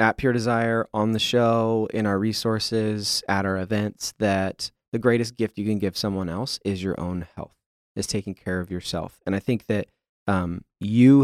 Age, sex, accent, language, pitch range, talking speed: 20-39, male, American, English, 95-115 Hz, 190 wpm